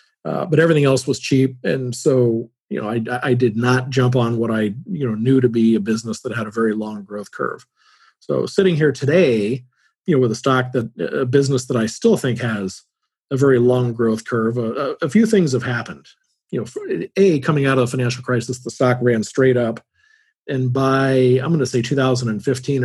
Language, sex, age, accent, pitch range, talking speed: English, male, 40-59, American, 115-135 Hz, 215 wpm